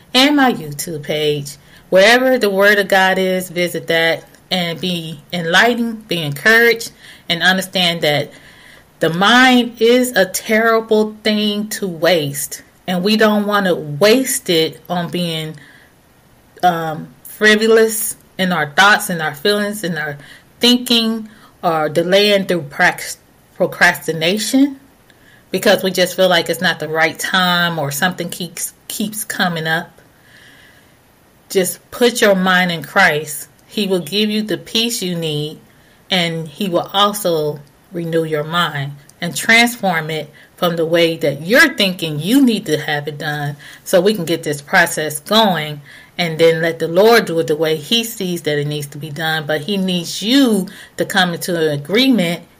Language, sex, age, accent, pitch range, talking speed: English, female, 30-49, American, 160-210 Hz, 155 wpm